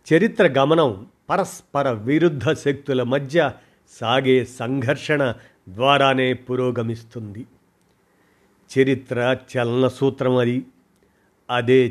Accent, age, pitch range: native, 50-69, 120-155 Hz